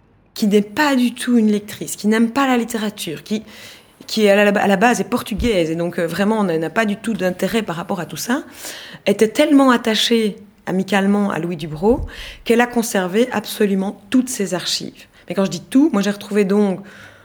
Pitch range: 180-225 Hz